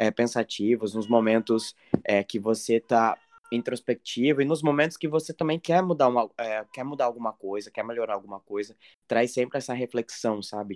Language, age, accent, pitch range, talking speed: Portuguese, 20-39, Brazilian, 110-145 Hz, 150 wpm